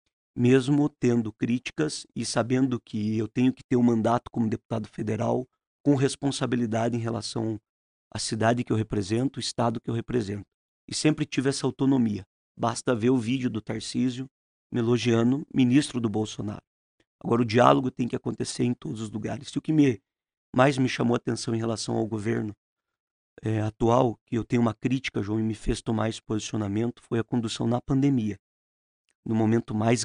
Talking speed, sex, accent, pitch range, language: 180 wpm, male, Brazilian, 110-130 Hz, Portuguese